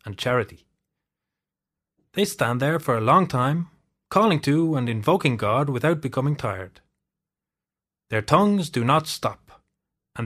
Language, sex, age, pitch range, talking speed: English, male, 30-49, 115-170 Hz, 135 wpm